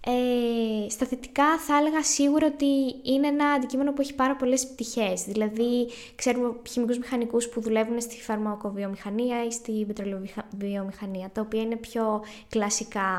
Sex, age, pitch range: female, 20-39, 215-270 Hz